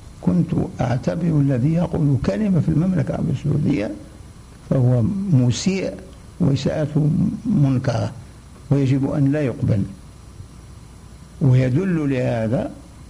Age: 60-79